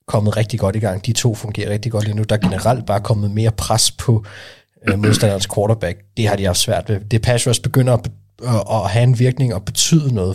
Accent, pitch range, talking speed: native, 105-130 Hz, 245 wpm